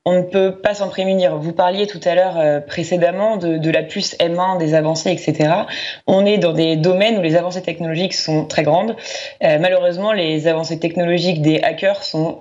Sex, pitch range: female, 155-195 Hz